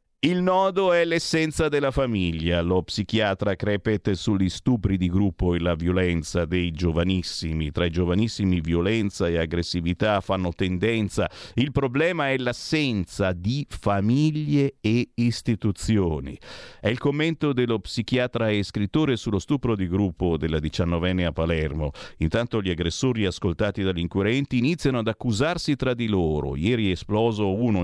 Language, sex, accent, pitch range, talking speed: Italian, male, native, 90-125 Hz, 140 wpm